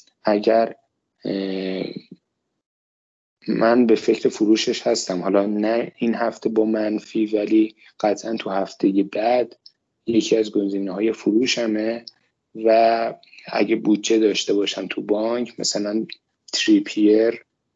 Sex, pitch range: male, 100-115 Hz